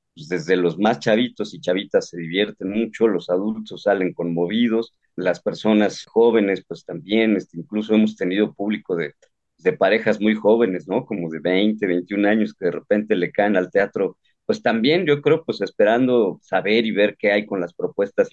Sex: male